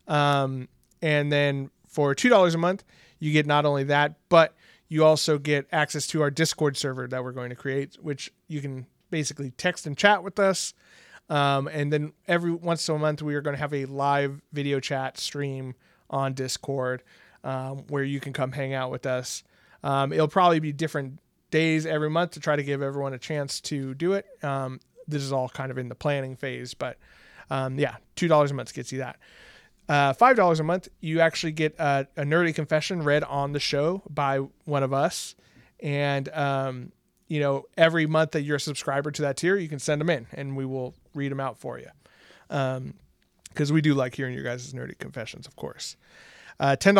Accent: American